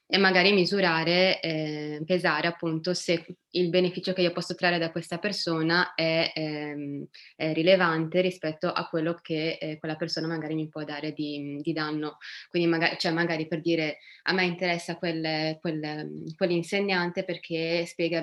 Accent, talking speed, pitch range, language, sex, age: native, 160 wpm, 160-180 Hz, Italian, female, 20-39